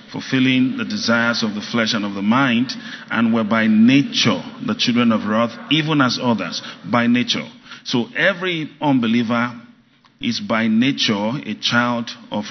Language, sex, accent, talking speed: English, male, Nigerian, 155 wpm